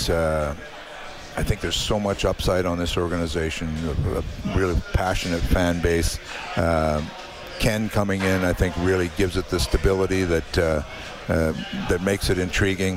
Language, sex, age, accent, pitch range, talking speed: English, male, 60-79, American, 90-100 Hz, 155 wpm